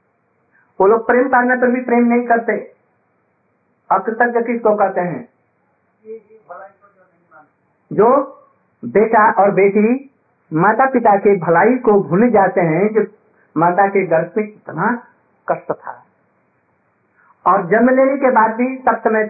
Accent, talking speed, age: native, 130 wpm, 50-69